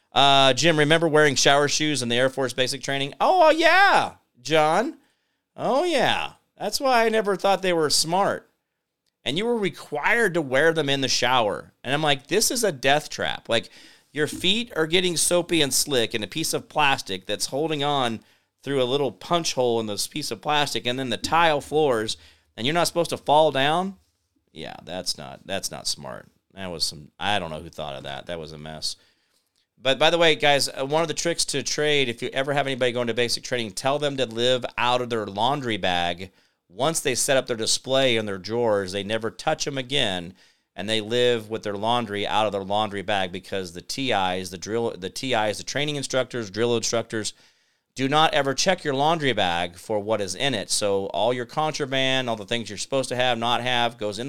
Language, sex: English, male